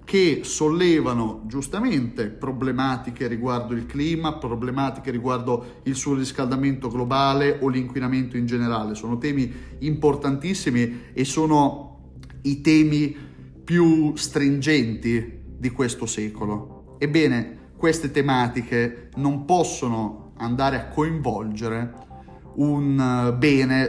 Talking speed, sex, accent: 95 wpm, male, native